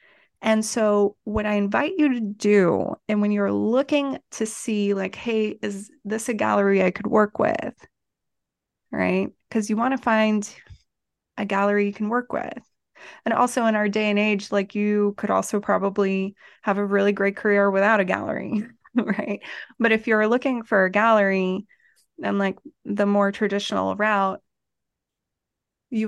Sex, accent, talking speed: female, American, 165 wpm